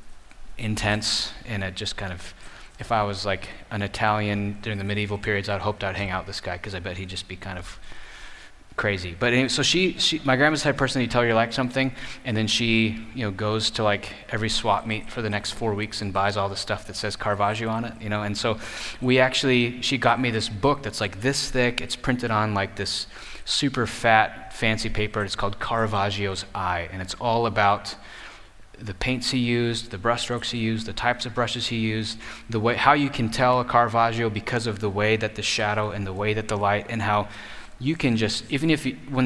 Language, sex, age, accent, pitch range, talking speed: English, male, 20-39, American, 100-120 Hz, 230 wpm